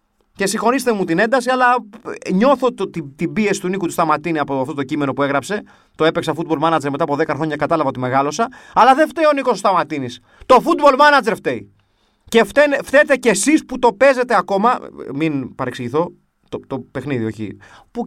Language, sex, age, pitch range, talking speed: Greek, male, 30-49, 120-170 Hz, 195 wpm